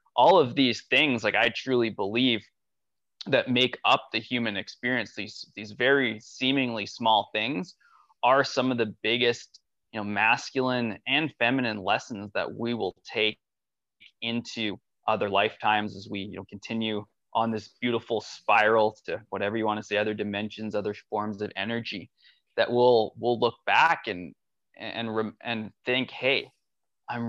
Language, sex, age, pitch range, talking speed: English, male, 20-39, 105-120 Hz, 150 wpm